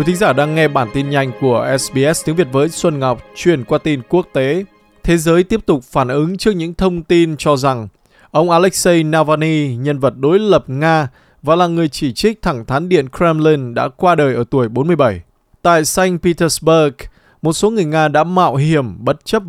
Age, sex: 20-39, male